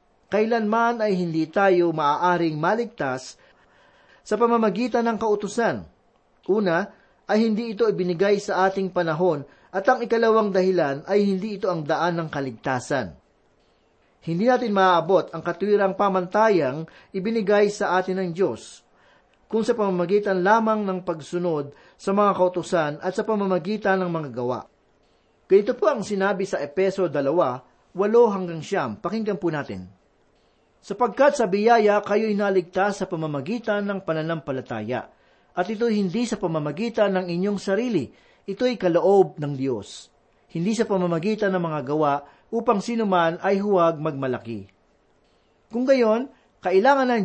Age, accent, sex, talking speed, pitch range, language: 40-59, native, male, 130 wpm, 165-215 Hz, Filipino